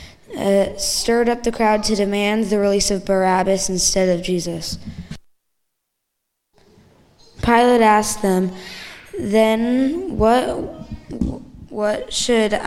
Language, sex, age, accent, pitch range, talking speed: English, female, 20-39, American, 190-215 Hz, 100 wpm